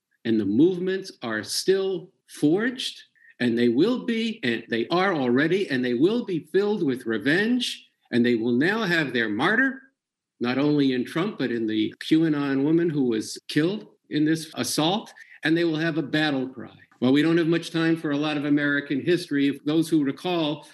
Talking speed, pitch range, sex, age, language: 190 wpm, 135-185 Hz, male, 50-69, English